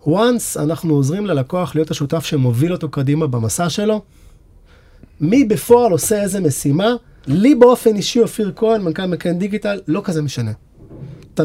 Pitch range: 155-215 Hz